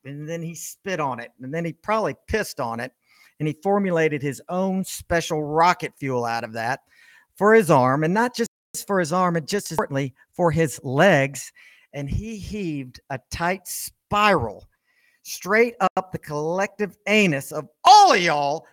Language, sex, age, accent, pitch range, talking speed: English, male, 50-69, American, 135-190 Hz, 175 wpm